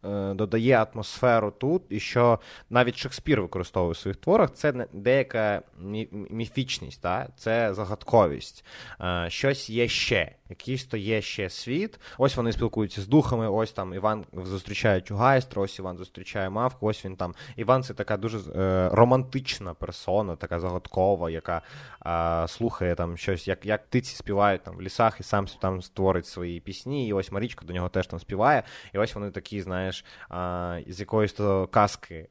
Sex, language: male, Ukrainian